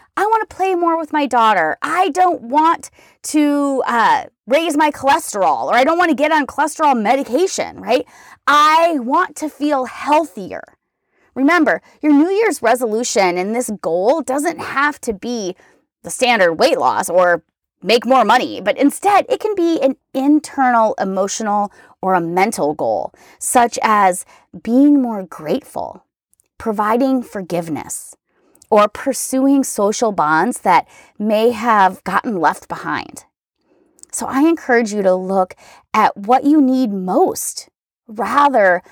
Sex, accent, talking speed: female, American, 140 wpm